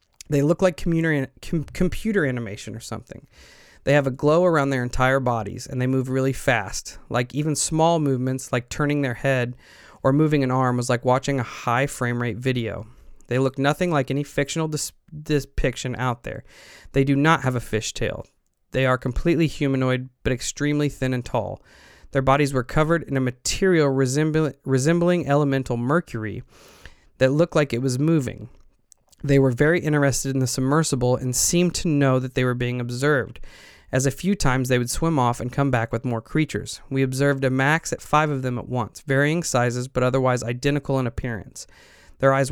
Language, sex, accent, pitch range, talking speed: English, male, American, 125-150 Hz, 190 wpm